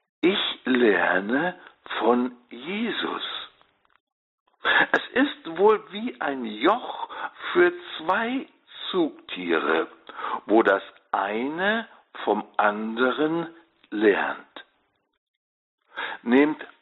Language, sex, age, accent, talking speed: German, male, 60-79, German, 70 wpm